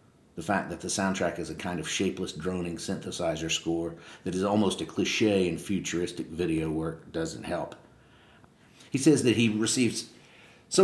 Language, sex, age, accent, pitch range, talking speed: English, male, 50-69, American, 90-115 Hz, 165 wpm